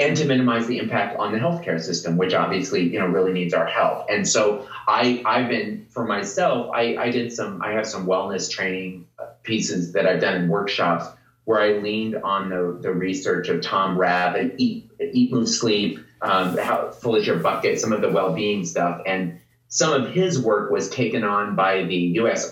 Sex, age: male, 30-49